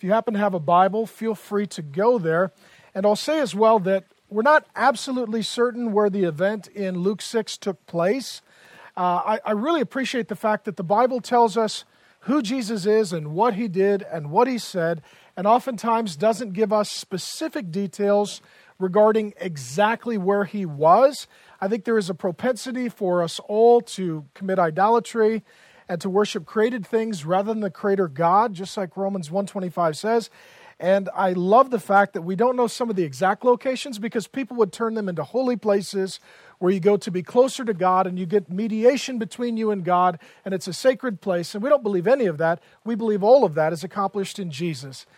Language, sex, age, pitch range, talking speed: English, male, 40-59, 185-230 Hz, 205 wpm